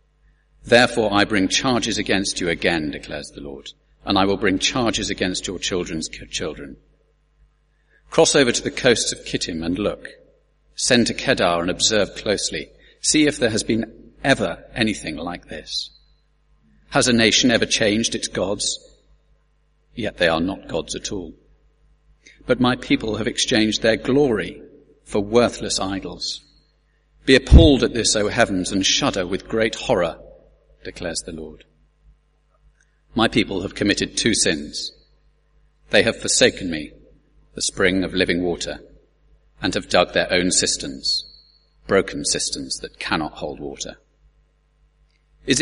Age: 40-59